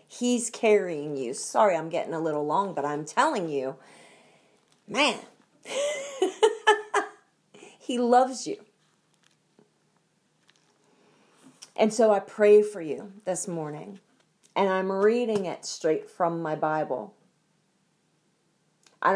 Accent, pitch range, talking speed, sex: American, 165-215 Hz, 105 wpm, female